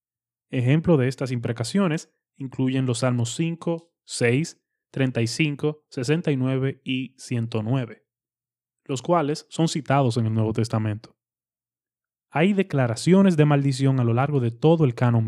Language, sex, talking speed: Spanish, male, 125 wpm